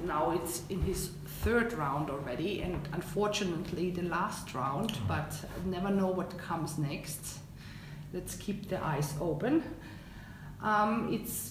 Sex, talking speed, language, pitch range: female, 135 wpm, Finnish, 180-215 Hz